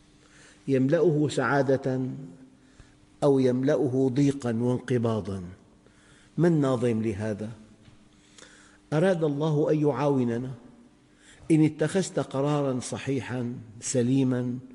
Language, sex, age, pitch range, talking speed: Arabic, male, 50-69, 115-140 Hz, 75 wpm